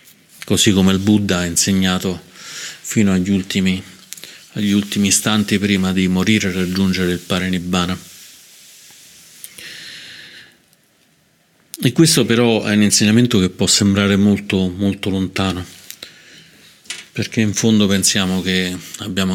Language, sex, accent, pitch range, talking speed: Italian, male, native, 95-105 Hz, 120 wpm